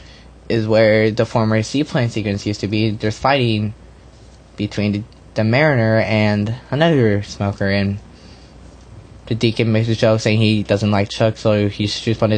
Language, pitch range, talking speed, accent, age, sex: English, 95-115 Hz, 160 wpm, American, 20-39, male